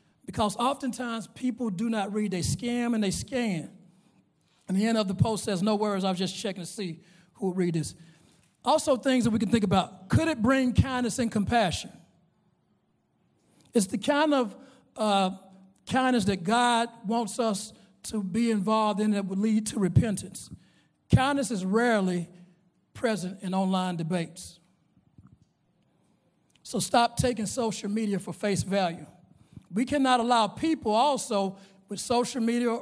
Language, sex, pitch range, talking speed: English, male, 195-250 Hz, 155 wpm